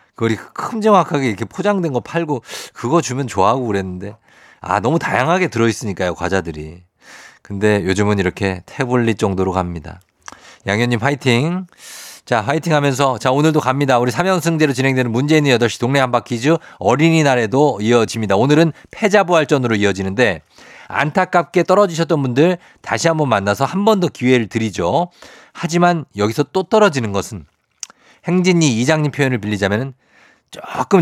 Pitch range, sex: 110-165 Hz, male